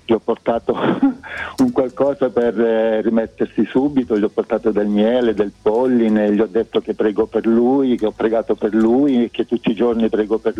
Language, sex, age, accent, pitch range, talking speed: Italian, male, 50-69, native, 105-120 Hz, 190 wpm